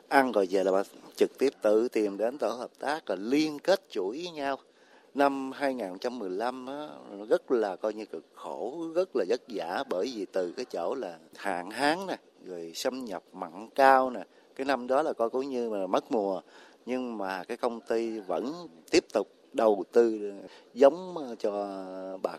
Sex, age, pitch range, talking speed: male, 30-49, 100-135 Hz, 185 wpm